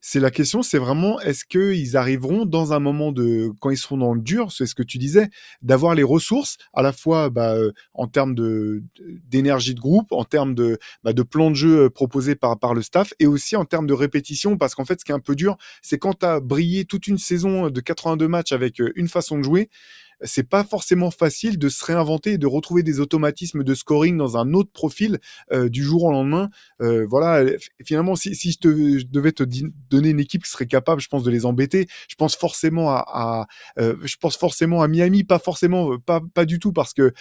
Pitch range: 135-180 Hz